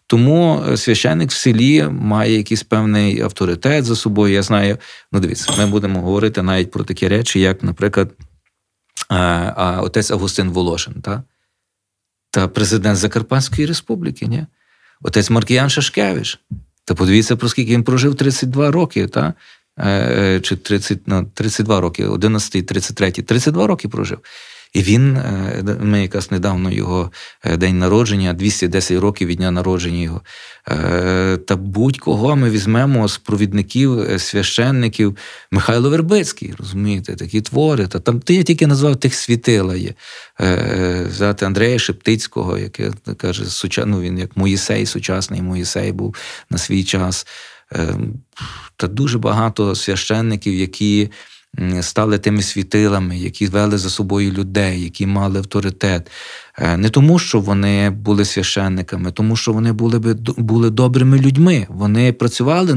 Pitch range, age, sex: 95-115 Hz, 40-59, male